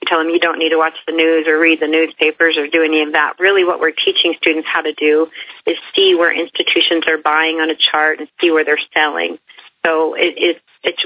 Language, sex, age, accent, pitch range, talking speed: English, female, 40-59, American, 155-175 Hz, 230 wpm